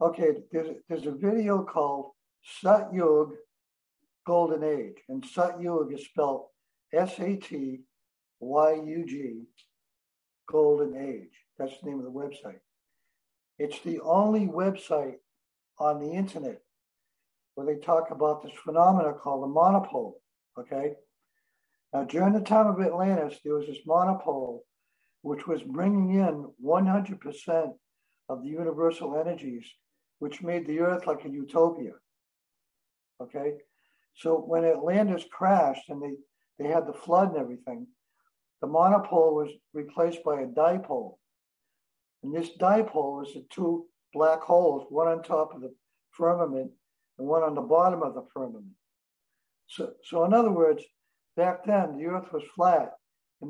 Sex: male